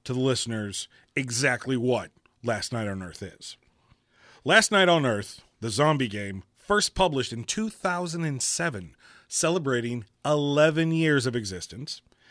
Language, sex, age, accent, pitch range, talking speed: English, male, 40-59, American, 115-155 Hz, 125 wpm